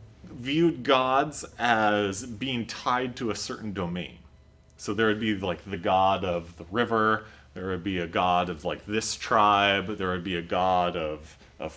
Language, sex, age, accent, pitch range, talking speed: English, male, 30-49, American, 100-150 Hz, 180 wpm